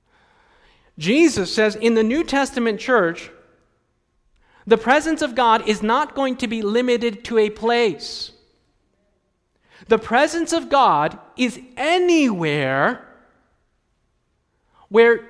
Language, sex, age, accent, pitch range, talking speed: English, male, 40-59, American, 225-290 Hz, 105 wpm